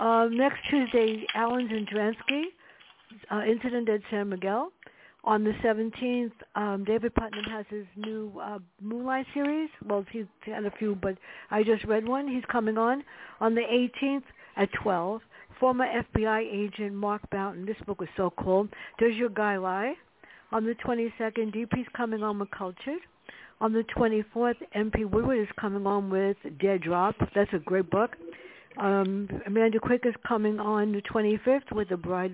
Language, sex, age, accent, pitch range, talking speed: English, female, 60-79, American, 190-230 Hz, 160 wpm